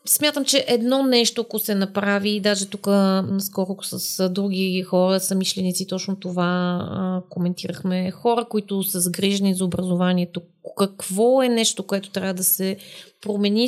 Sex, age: female, 30-49